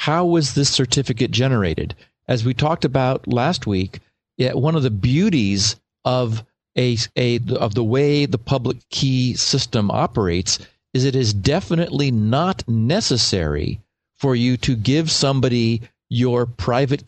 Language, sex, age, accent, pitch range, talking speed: English, male, 50-69, American, 110-140 Hz, 145 wpm